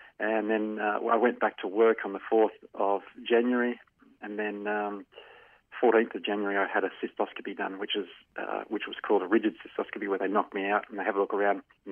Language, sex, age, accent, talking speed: English, male, 40-59, Australian, 225 wpm